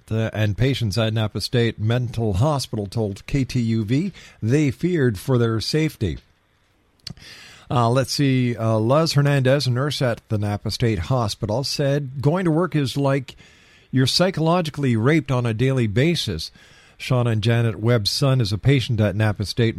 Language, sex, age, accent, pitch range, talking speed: English, male, 50-69, American, 110-140 Hz, 155 wpm